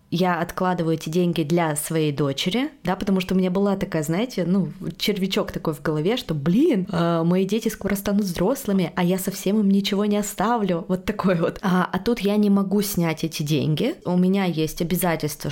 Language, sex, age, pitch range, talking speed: Russian, female, 20-39, 160-190 Hz, 195 wpm